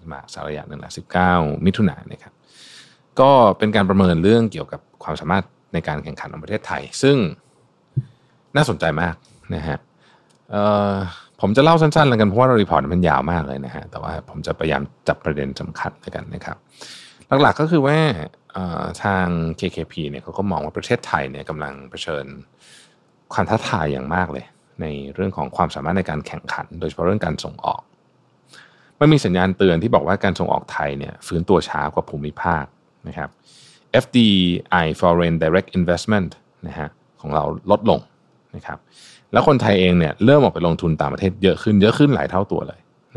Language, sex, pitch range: Thai, male, 80-120 Hz